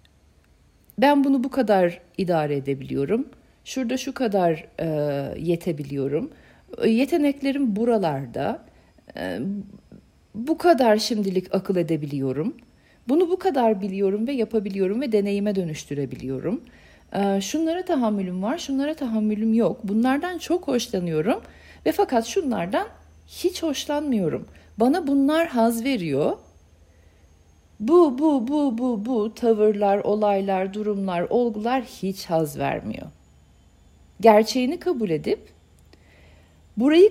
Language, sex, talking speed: Turkish, female, 100 wpm